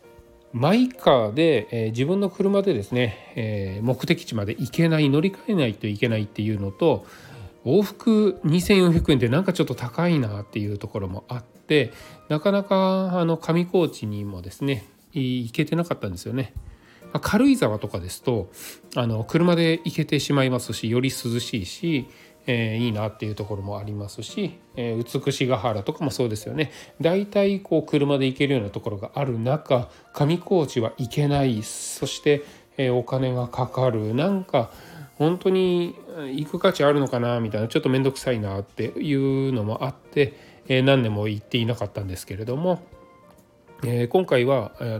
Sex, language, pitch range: male, Japanese, 115-160 Hz